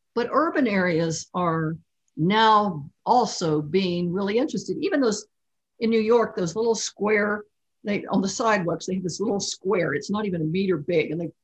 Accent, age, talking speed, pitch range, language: American, 60-79, 170 wpm, 175-230 Hz, English